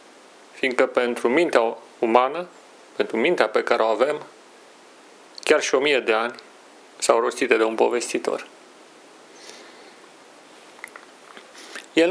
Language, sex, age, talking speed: Romanian, male, 40-59, 110 wpm